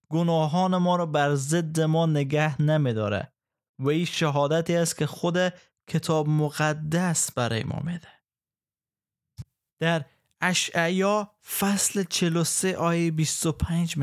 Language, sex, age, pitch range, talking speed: Persian, male, 20-39, 140-165 Hz, 110 wpm